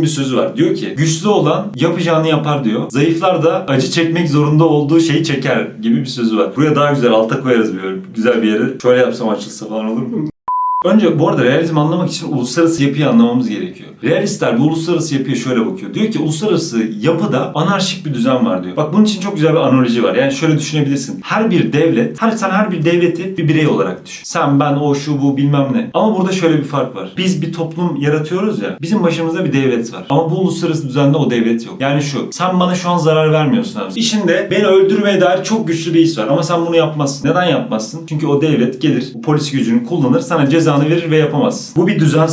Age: 40-59